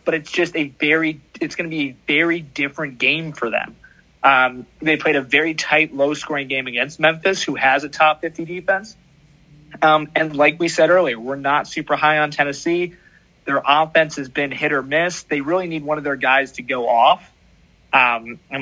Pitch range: 145-180 Hz